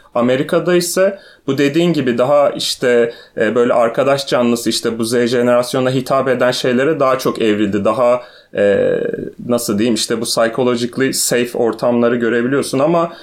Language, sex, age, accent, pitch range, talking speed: Turkish, male, 30-49, native, 120-140 Hz, 135 wpm